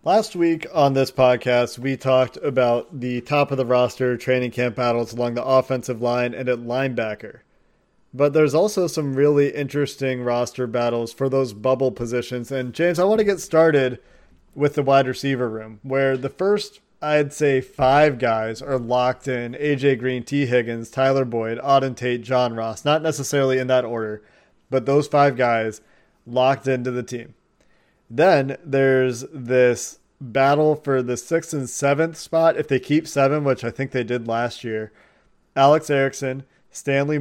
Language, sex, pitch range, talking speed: English, male, 125-145 Hz, 170 wpm